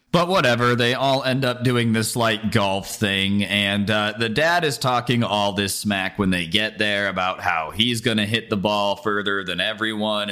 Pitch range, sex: 105-135 Hz, male